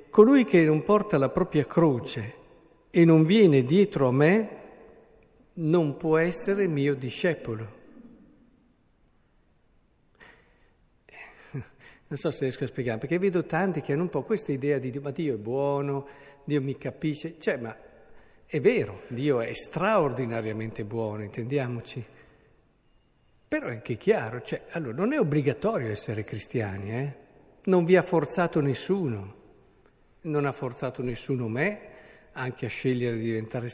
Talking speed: 140 wpm